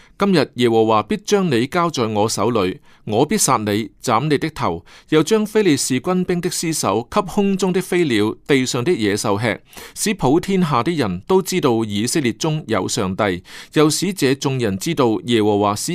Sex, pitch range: male, 105-170 Hz